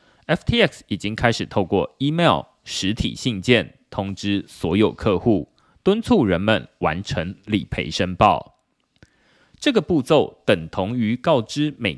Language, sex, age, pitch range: Chinese, male, 30-49, 95-130 Hz